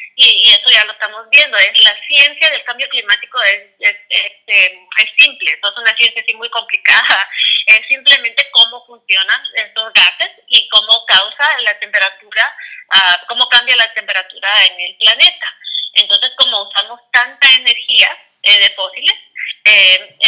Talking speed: 160 wpm